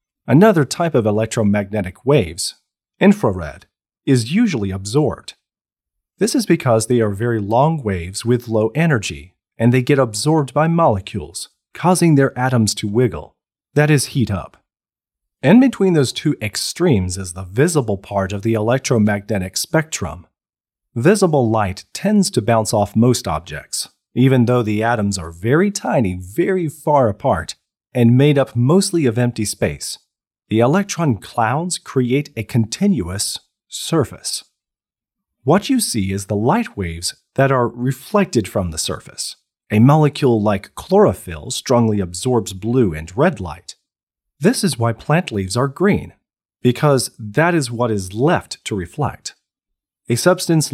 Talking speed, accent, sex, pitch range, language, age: 140 wpm, American, male, 105-150 Hz, English, 40-59